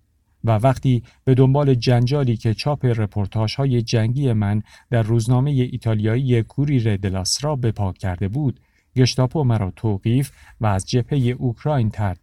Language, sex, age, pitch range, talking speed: Persian, male, 50-69, 100-130 Hz, 135 wpm